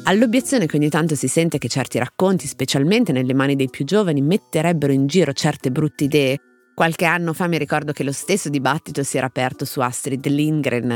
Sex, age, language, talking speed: female, 30-49, Italian, 195 wpm